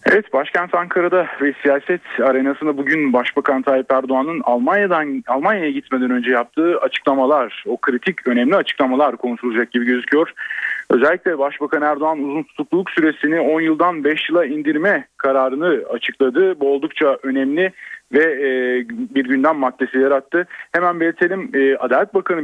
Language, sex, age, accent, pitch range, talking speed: Turkish, male, 40-59, native, 135-180 Hz, 130 wpm